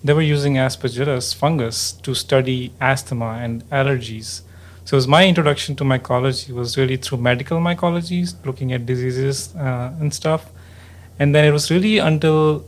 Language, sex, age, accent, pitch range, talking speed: English, male, 30-49, Indian, 125-145 Hz, 160 wpm